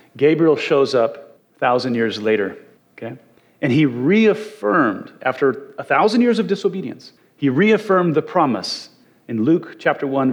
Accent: American